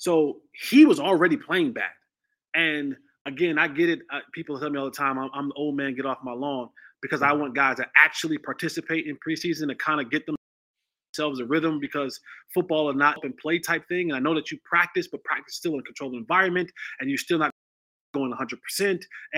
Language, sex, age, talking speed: English, male, 20-39, 215 wpm